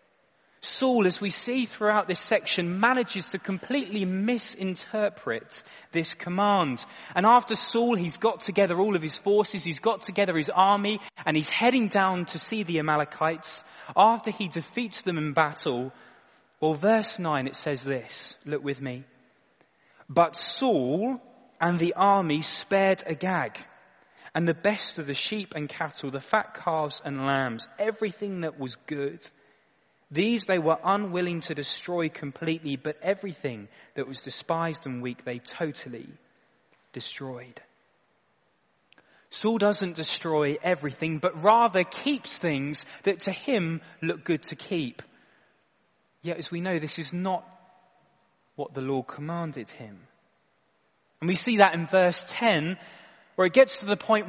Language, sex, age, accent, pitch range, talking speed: English, male, 20-39, British, 155-205 Hz, 145 wpm